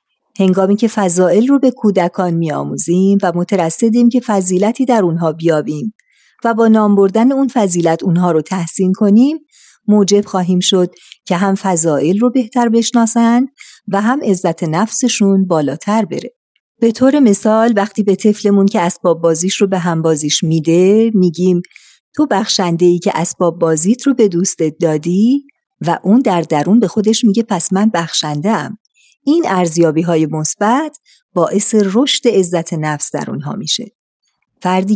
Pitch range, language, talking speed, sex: 170-220 Hz, Persian, 145 wpm, female